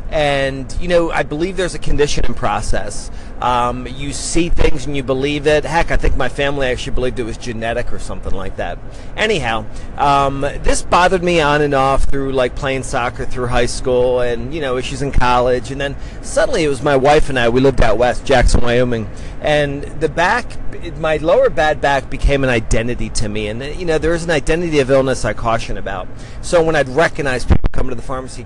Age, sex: 40-59, male